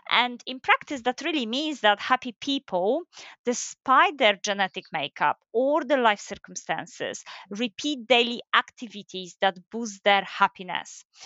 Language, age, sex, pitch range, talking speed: English, 30-49, female, 210-275 Hz, 130 wpm